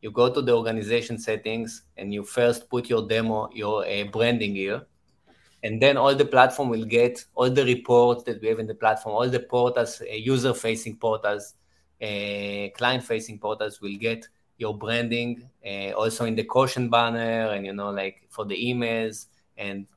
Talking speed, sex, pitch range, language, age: 175 wpm, male, 110-125 Hz, English, 20-39